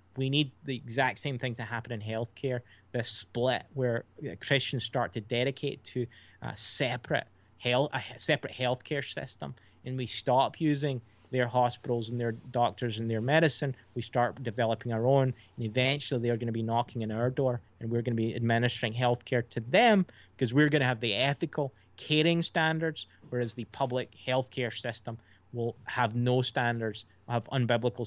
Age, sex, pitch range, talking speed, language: 30-49, male, 115-140 Hz, 175 wpm, English